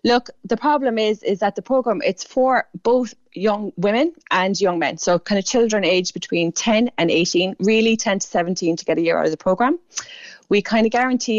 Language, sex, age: English, female, 20-39